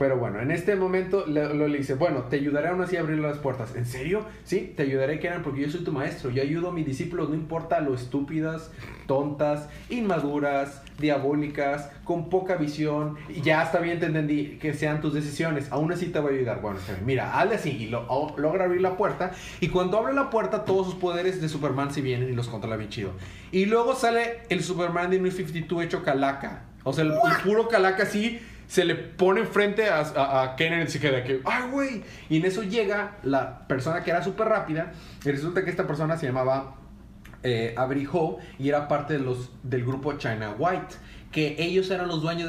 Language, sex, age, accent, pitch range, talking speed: Spanish, male, 30-49, Mexican, 135-180 Hz, 215 wpm